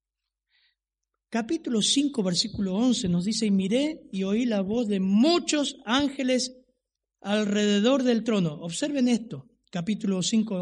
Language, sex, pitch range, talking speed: Spanish, male, 170-235 Hz, 125 wpm